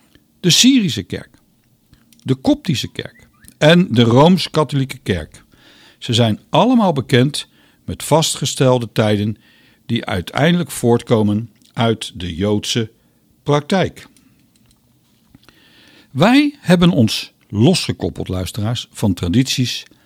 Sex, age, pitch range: male, 60-79, 115-170 Hz